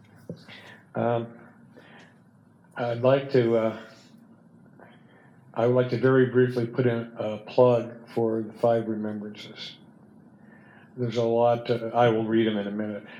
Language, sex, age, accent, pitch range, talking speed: English, male, 50-69, American, 110-125 Hz, 135 wpm